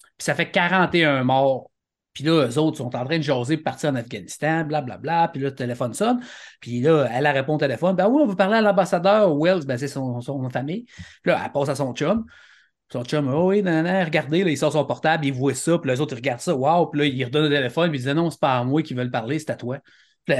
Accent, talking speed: Canadian, 280 wpm